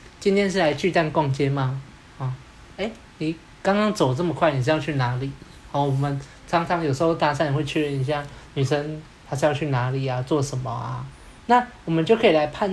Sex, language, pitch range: male, Chinese, 135-180 Hz